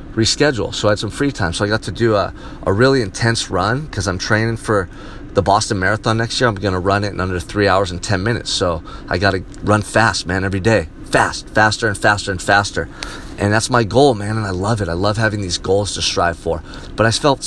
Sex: male